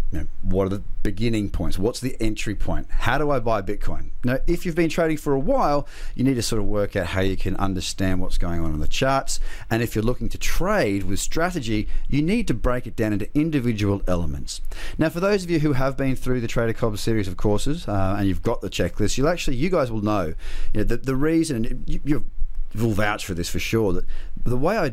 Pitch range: 95-120 Hz